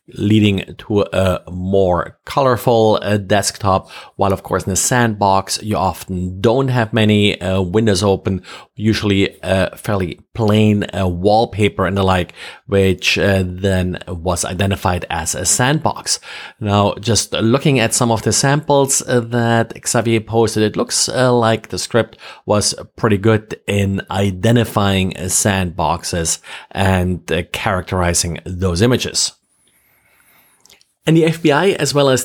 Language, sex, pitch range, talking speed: English, male, 95-120 Hz, 135 wpm